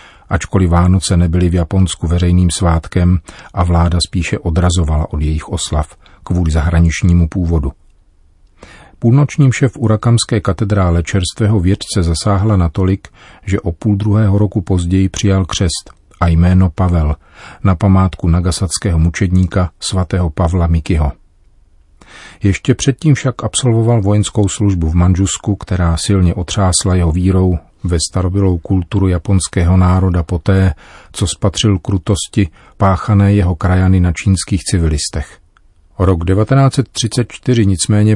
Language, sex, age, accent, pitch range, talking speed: Czech, male, 40-59, native, 85-100 Hz, 120 wpm